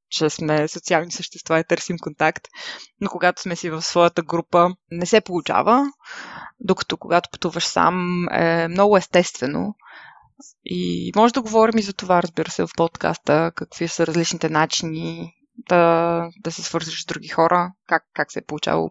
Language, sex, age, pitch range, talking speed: Bulgarian, female, 20-39, 165-185 Hz, 160 wpm